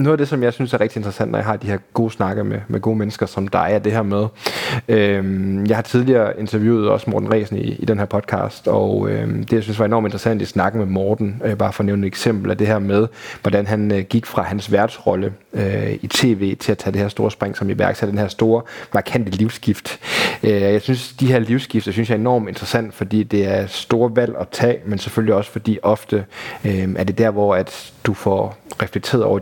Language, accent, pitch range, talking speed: Danish, native, 100-120 Hz, 245 wpm